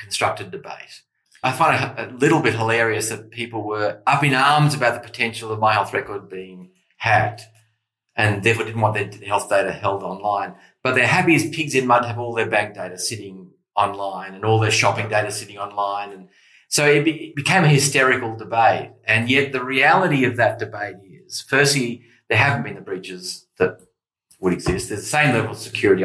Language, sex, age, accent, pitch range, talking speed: English, male, 30-49, Australian, 105-135 Hz, 200 wpm